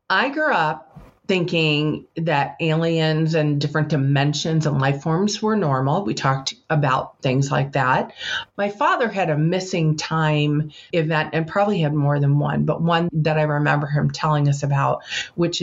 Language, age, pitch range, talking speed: English, 40-59, 145-165 Hz, 165 wpm